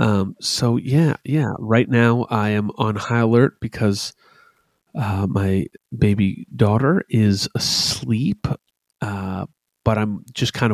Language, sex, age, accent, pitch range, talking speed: English, male, 30-49, American, 95-115 Hz, 130 wpm